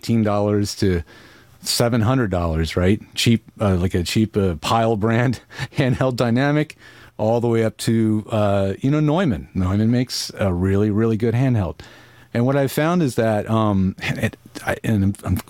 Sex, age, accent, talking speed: male, 40-59, American, 145 wpm